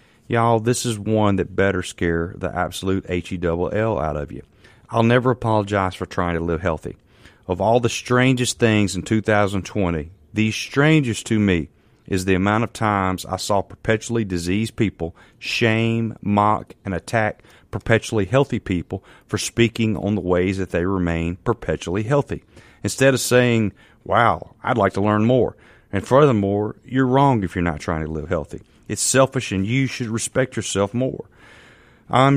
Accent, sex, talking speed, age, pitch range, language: American, male, 165 wpm, 40-59, 90-115 Hz, English